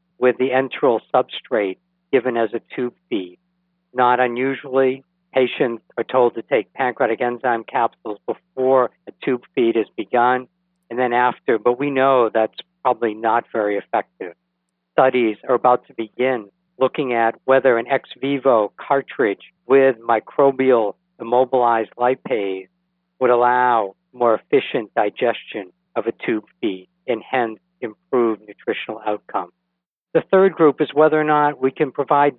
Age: 60-79